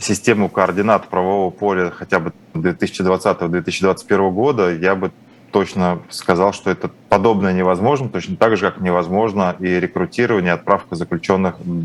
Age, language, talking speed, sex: 20-39, Russian, 130 wpm, male